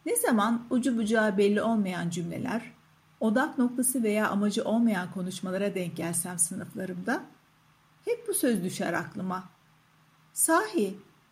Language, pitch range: Turkish, 175-255 Hz